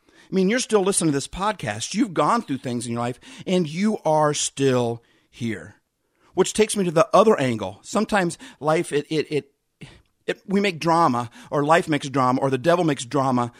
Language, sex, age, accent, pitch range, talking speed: English, male, 50-69, American, 120-165 Hz, 200 wpm